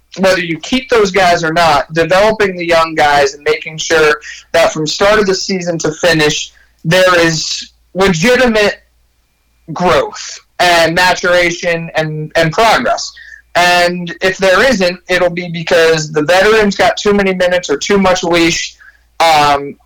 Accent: American